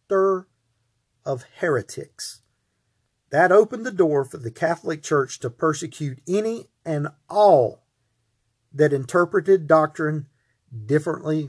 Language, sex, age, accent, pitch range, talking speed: English, male, 40-59, American, 125-160 Hz, 100 wpm